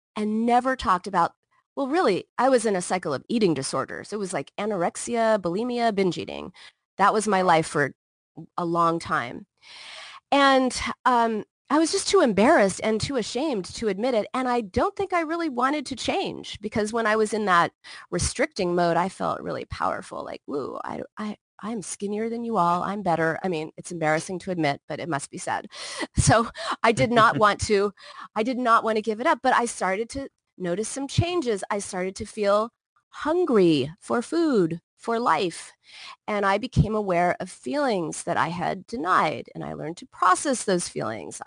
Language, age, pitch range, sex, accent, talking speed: English, 30-49, 180-255 Hz, female, American, 190 wpm